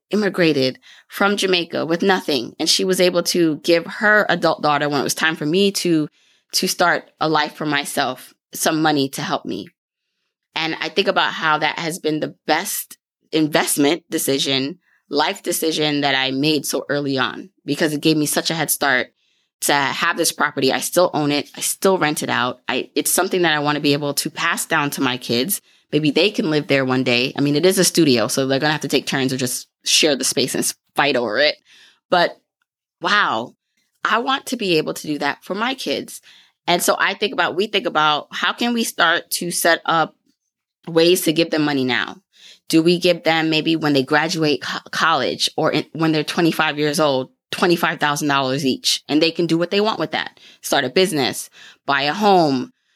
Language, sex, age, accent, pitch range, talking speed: English, female, 20-39, American, 145-175 Hz, 210 wpm